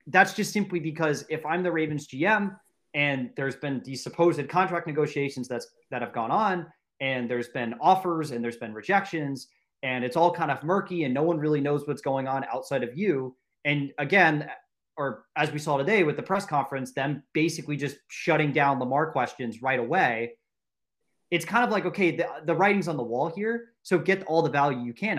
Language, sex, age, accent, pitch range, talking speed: English, male, 20-39, American, 130-170 Hz, 200 wpm